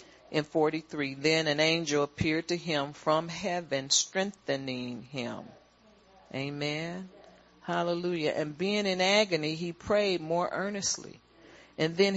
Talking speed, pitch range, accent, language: 120 wpm, 130-185 Hz, American, English